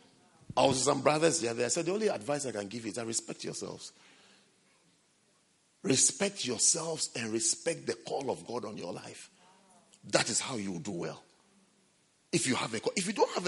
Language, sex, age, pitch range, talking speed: English, male, 50-69, 145-205 Hz, 195 wpm